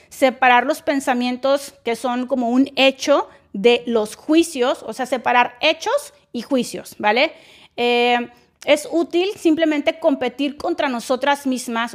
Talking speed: 130 wpm